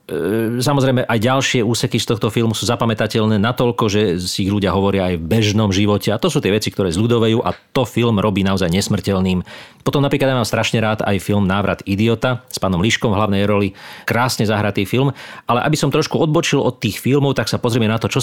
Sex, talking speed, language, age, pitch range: male, 215 wpm, Slovak, 40-59, 100-125 Hz